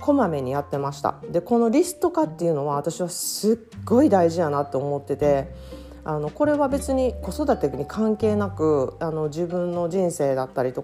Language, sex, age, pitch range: Japanese, female, 40-59, 155-245 Hz